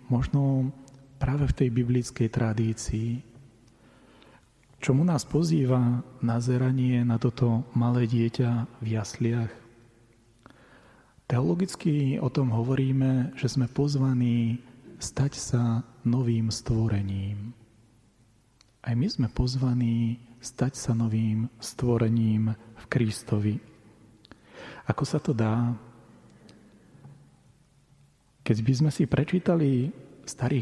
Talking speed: 95 wpm